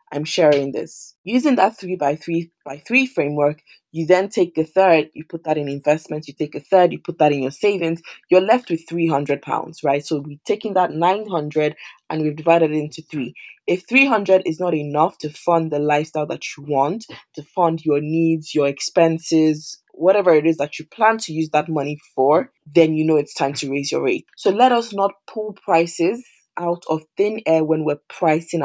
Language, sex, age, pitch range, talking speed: English, female, 20-39, 150-175 Hz, 210 wpm